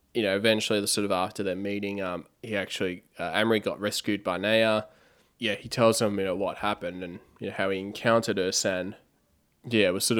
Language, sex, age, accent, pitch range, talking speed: English, male, 20-39, Australian, 95-110 Hz, 225 wpm